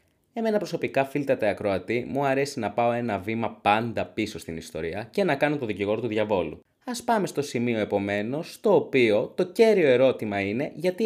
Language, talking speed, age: Greek, 185 wpm, 20-39